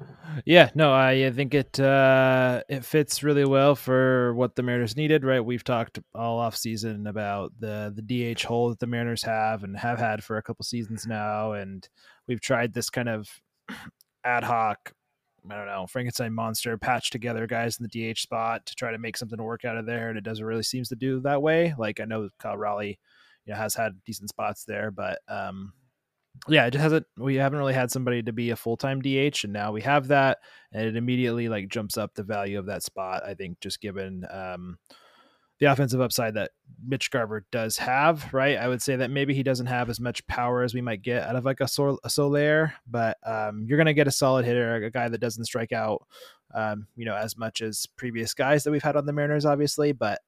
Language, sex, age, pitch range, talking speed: English, male, 20-39, 110-135 Hz, 225 wpm